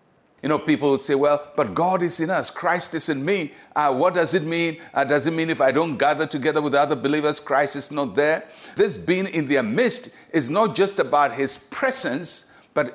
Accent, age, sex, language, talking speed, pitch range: Nigerian, 60-79, male, English, 225 wpm, 145-195 Hz